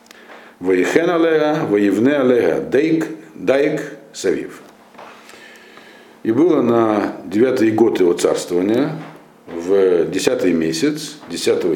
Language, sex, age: Russian, male, 50-69